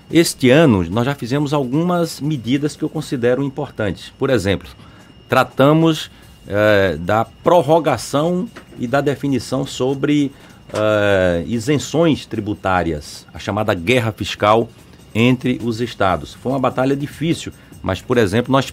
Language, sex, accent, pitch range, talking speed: Portuguese, male, Brazilian, 100-130 Hz, 125 wpm